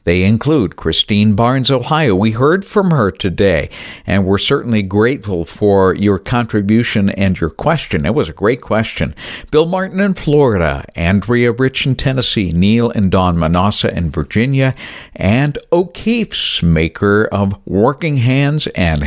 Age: 60-79